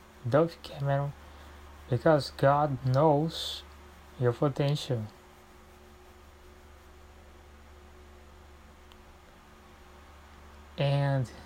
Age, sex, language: 20-39, male, Portuguese